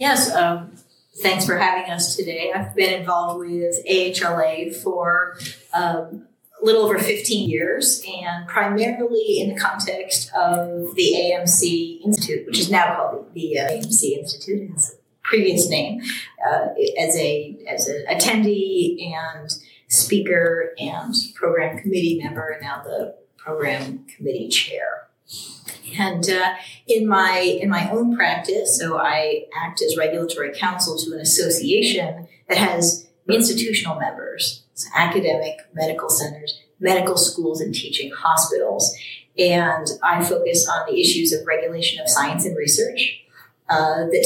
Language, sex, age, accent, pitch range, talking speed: English, female, 30-49, American, 165-220 Hz, 140 wpm